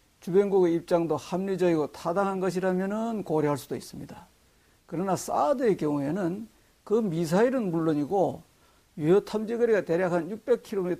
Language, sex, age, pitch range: Korean, male, 60-79, 160-235 Hz